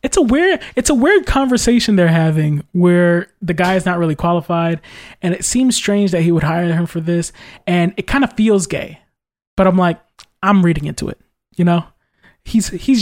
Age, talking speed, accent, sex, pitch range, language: 20-39, 205 wpm, American, male, 165-200 Hz, English